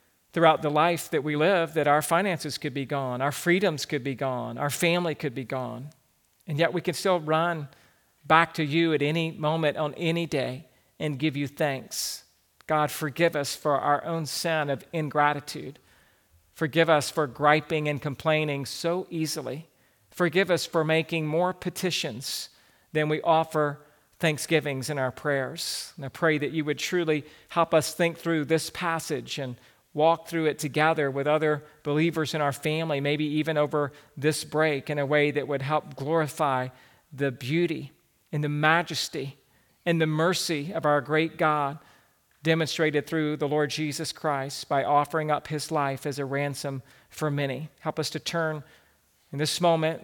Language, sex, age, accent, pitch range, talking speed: English, male, 50-69, American, 140-160 Hz, 170 wpm